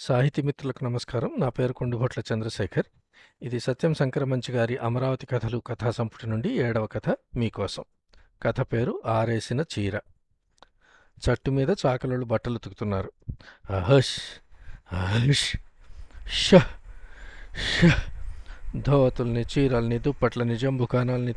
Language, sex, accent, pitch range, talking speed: Telugu, male, native, 115-135 Hz, 95 wpm